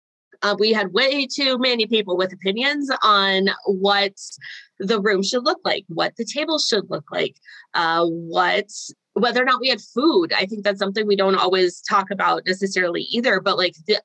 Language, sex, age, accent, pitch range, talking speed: English, female, 20-39, American, 195-235 Hz, 190 wpm